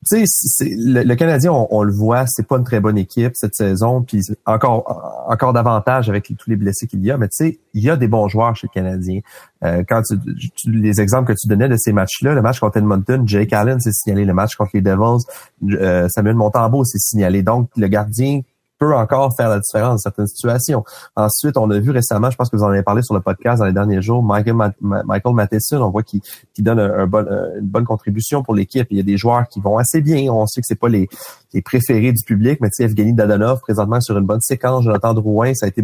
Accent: Canadian